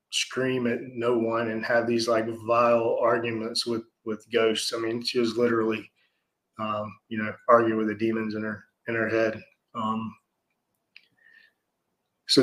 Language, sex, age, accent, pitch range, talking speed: English, male, 20-39, American, 115-130 Hz, 155 wpm